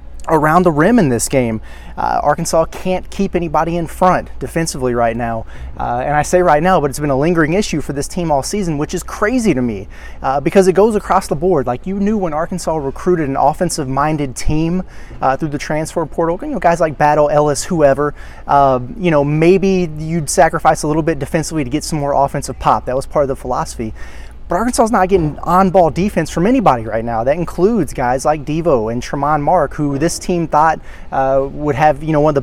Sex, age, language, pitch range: male, 30-49, English, 140-175 Hz